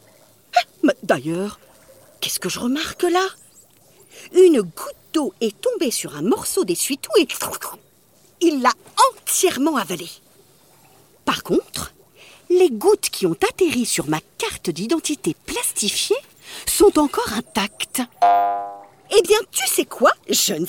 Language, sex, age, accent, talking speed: French, female, 50-69, French, 120 wpm